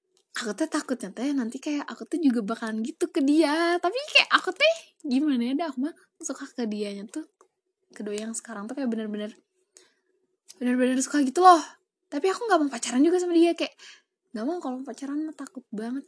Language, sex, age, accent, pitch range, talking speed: Indonesian, female, 10-29, native, 220-350 Hz, 190 wpm